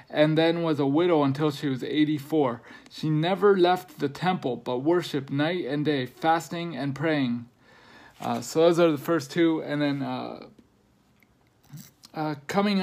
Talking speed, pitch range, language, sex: 160 wpm, 145-175 Hz, English, male